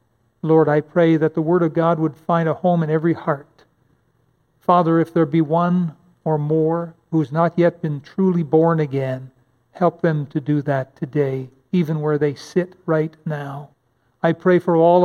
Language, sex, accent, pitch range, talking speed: English, male, American, 140-175 Hz, 180 wpm